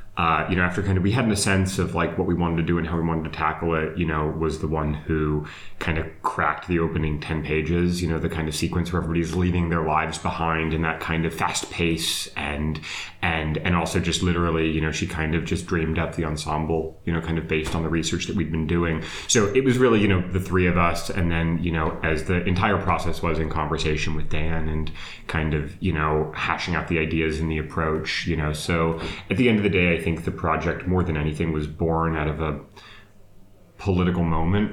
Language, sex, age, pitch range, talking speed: English, male, 30-49, 80-90 Hz, 245 wpm